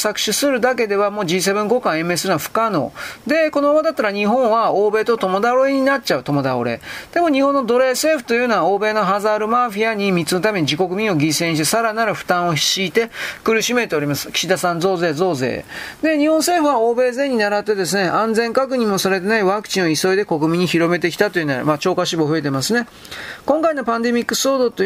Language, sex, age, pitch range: Japanese, male, 40-59, 180-240 Hz